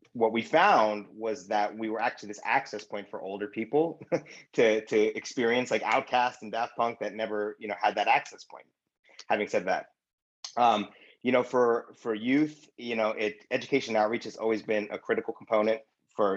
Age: 30-49